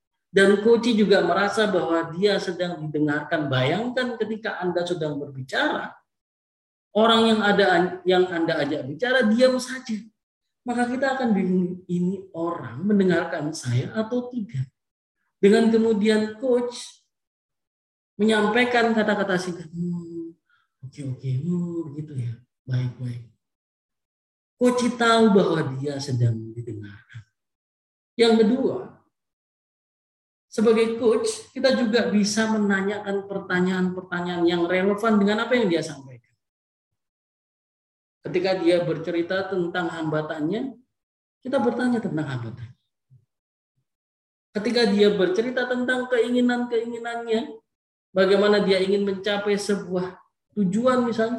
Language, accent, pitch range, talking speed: Indonesian, native, 140-220 Hz, 105 wpm